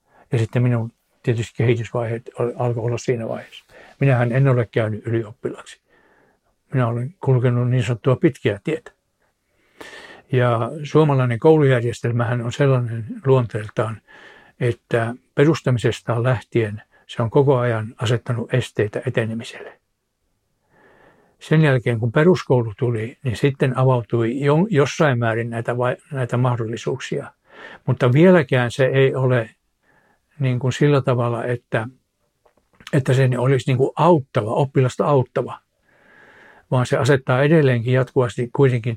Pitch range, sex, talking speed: 120-140 Hz, male, 110 wpm